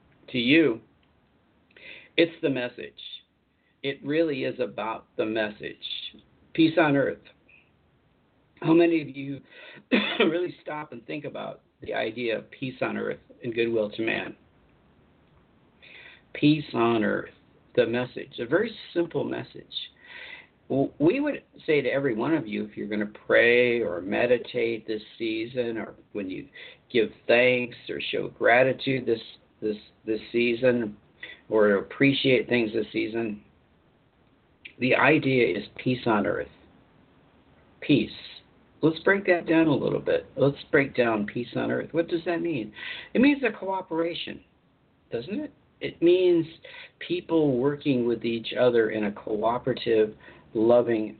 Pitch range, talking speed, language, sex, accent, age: 115-165 Hz, 140 wpm, English, male, American, 50-69